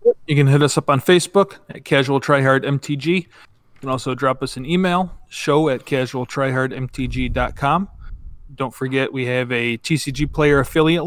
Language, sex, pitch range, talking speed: English, male, 125-145 Hz, 165 wpm